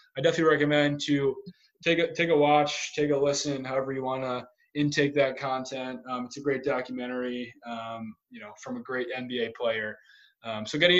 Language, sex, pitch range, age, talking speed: English, male, 130-165 Hz, 20-39, 190 wpm